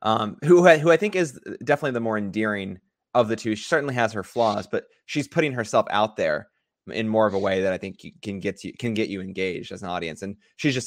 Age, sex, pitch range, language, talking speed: 20-39, male, 95-120 Hz, English, 255 wpm